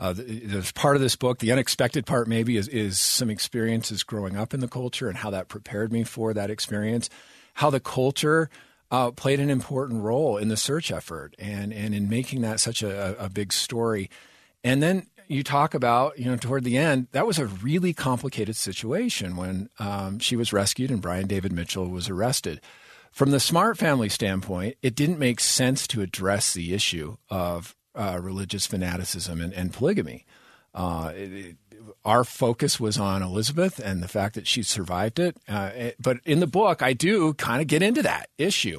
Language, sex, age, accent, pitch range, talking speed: English, male, 40-59, American, 100-135 Hz, 195 wpm